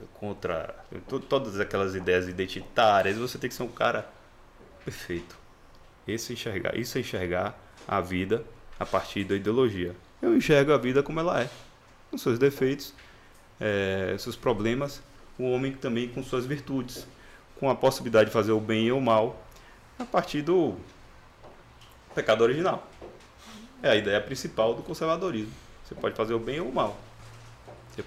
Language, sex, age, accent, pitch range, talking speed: Portuguese, male, 20-39, Brazilian, 95-130 Hz, 155 wpm